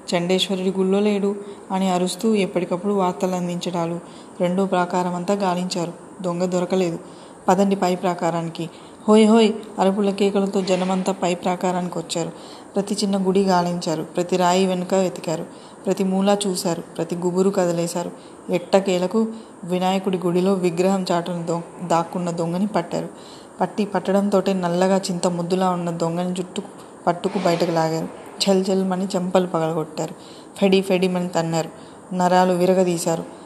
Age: 20-39